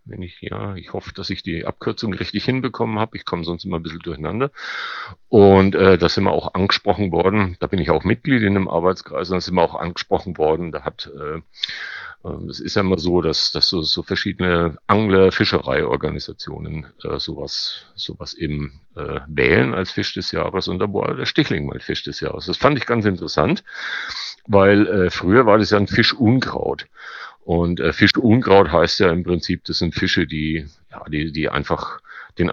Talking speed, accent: 190 wpm, German